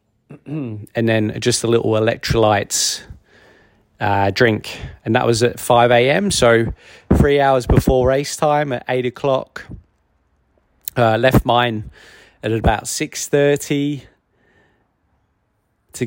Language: English